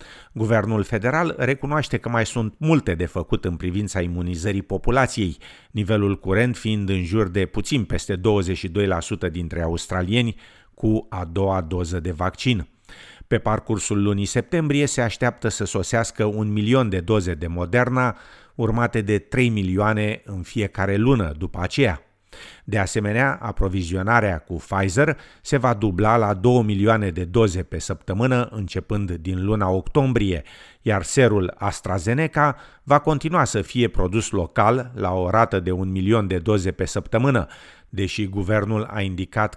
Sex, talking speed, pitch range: male, 145 wpm, 95-120 Hz